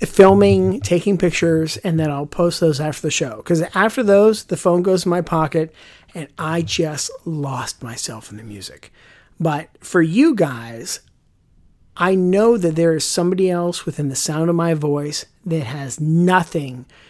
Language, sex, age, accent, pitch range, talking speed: English, male, 50-69, American, 155-185 Hz, 170 wpm